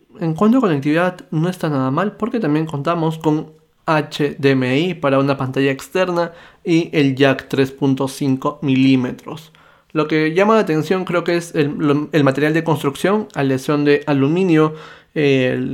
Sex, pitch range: male, 135-160 Hz